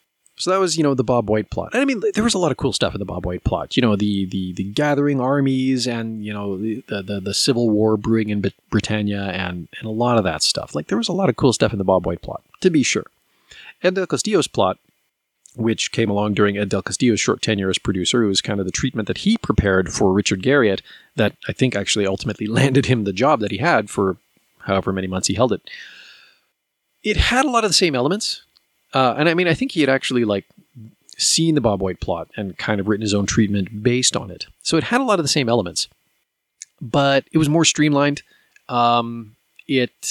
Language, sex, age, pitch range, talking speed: English, male, 30-49, 100-150 Hz, 240 wpm